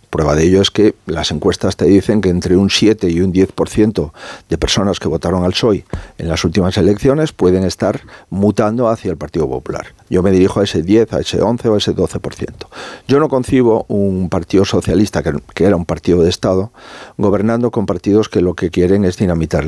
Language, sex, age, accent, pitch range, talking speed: Spanish, male, 50-69, Spanish, 90-110 Hz, 205 wpm